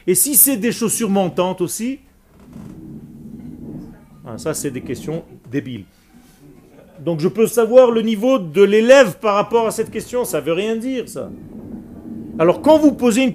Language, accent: French, French